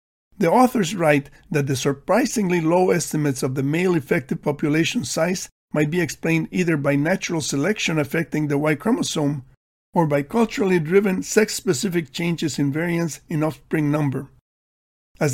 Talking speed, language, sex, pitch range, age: 145 wpm, English, male, 150-195 Hz, 50-69